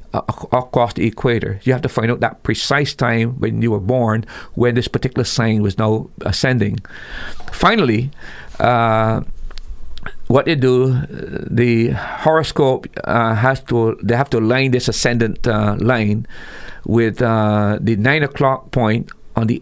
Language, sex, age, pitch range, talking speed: English, male, 50-69, 105-125 Hz, 145 wpm